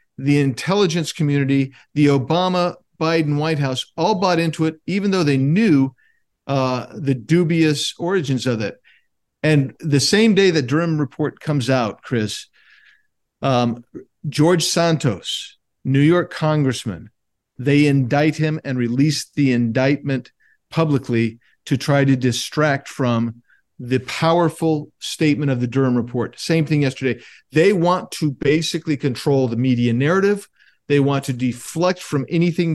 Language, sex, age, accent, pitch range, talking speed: English, male, 50-69, American, 130-160 Hz, 135 wpm